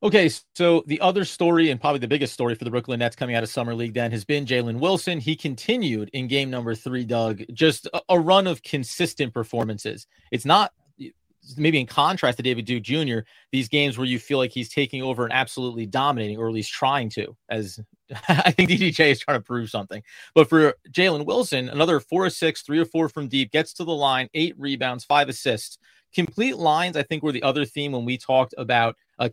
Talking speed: 215 wpm